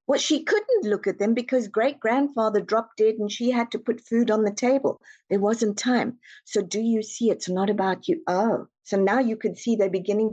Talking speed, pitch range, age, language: 220 wpm, 185-230 Hz, 50-69, English